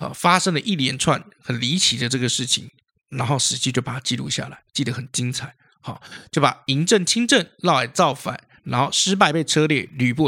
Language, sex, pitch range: Chinese, male, 125-180 Hz